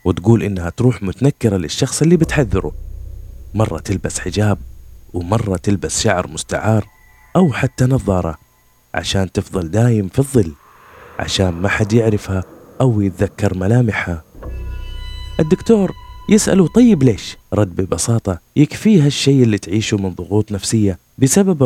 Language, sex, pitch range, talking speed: Arabic, male, 90-115 Hz, 120 wpm